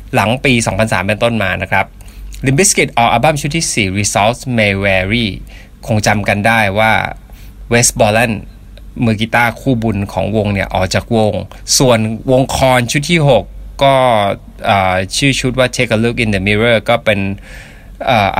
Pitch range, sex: 105-140 Hz, male